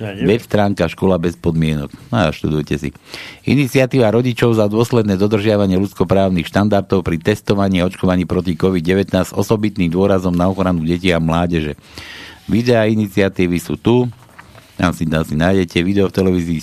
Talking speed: 145 wpm